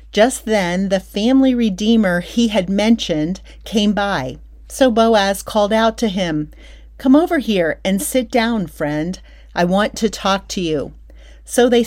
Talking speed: 155 wpm